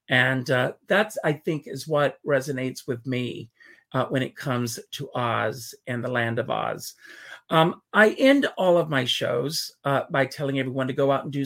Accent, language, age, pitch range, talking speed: American, English, 40-59, 135-205 Hz, 195 wpm